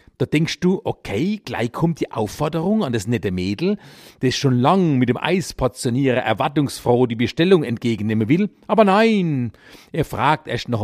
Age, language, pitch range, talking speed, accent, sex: 50-69, German, 125-205 Hz, 160 wpm, German, male